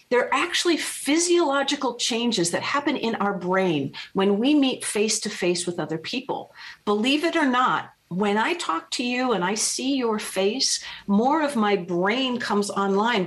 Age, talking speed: 50-69, 170 wpm